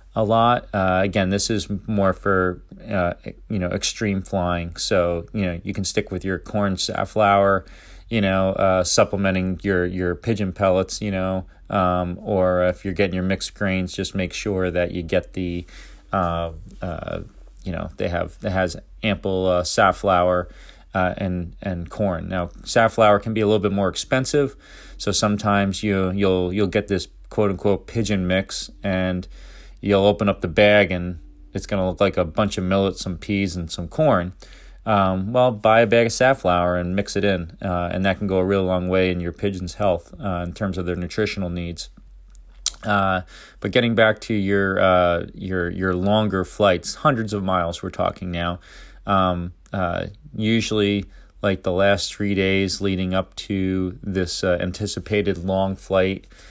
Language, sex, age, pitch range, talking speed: English, male, 30-49, 90-100 Hz, 180 wpm